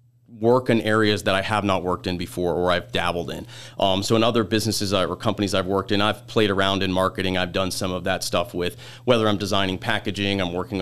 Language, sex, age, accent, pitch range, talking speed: English, male, 40-59, American, 95-120 Hz, 235 wpm